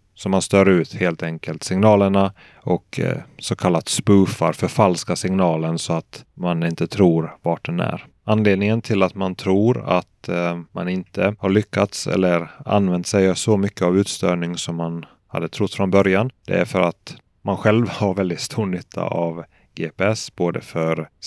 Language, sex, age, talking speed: Swedish, male, 30-49, 170 wpm